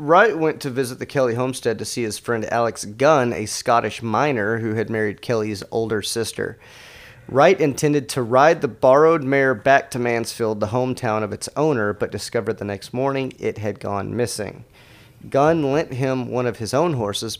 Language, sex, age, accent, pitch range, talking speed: English, male, 30-49, American, 110-135 Hz, 185 wpm